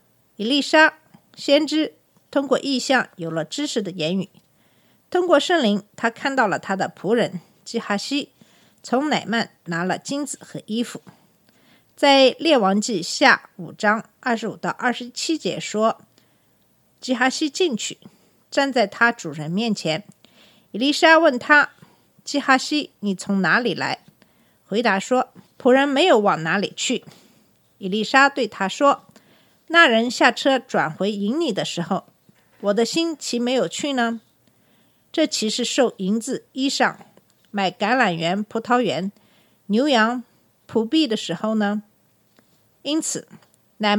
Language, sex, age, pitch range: Chinese, female, 50-69, 195-275 Hz